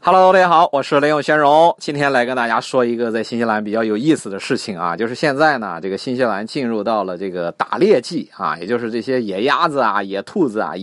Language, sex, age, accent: Chinese, male, 30-49, native